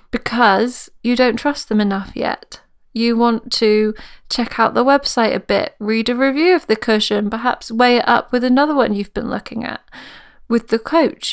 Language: English